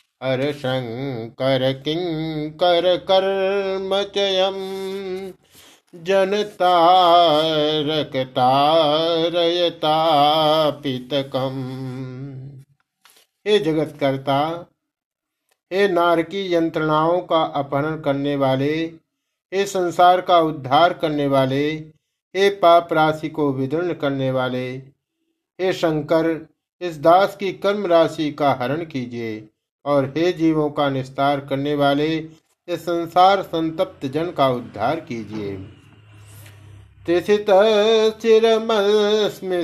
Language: Hindi